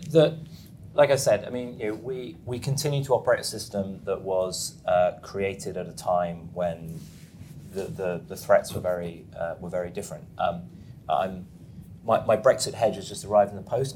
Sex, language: male, English